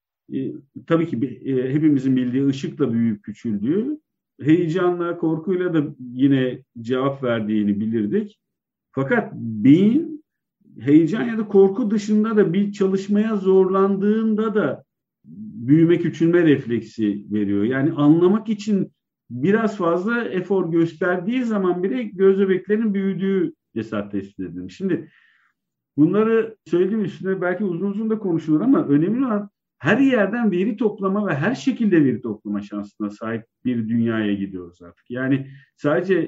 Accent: native